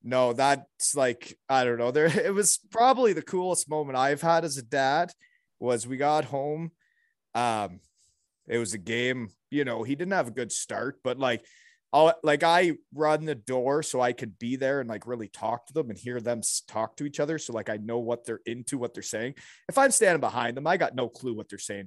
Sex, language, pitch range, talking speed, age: male, English, 115-155 Hz, 230 wpm, 30-49